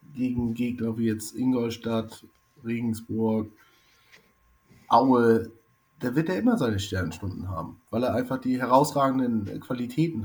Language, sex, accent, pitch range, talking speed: German, male, German, 110-130 Hz, 125 wpm